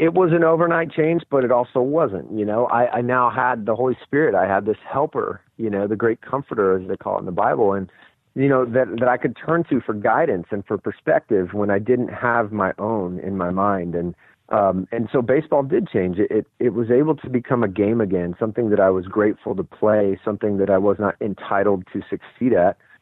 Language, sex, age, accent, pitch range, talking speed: English, male, 40-59, American, 100-125 Hz, 230 wpm